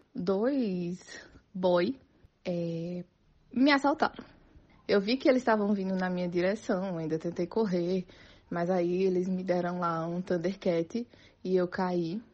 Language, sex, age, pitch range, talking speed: Portuguese, female, 20-39, 180-230 Hz, 135 wpm